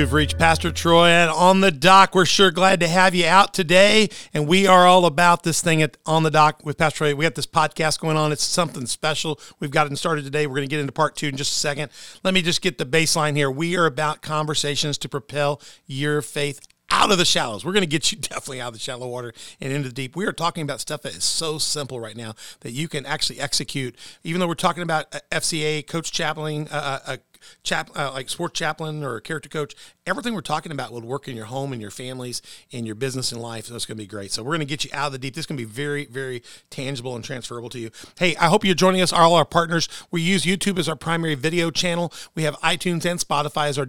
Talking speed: 265 wpm